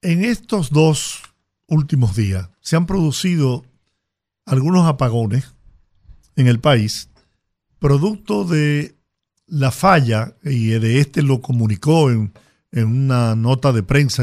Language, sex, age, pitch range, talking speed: Spanish, male, 50-69, 120-155 Hz, 120 wpm